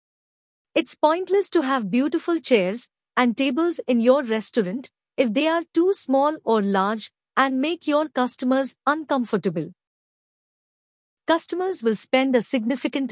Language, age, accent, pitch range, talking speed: English, 50-69, Indian, 230-315 Hz, 130 wpm